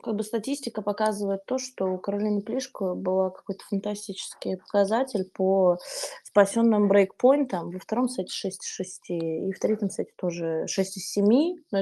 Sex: female